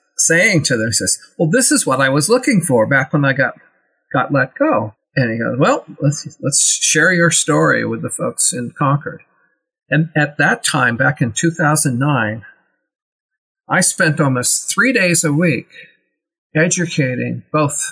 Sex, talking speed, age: male, 165 wpm, 50-69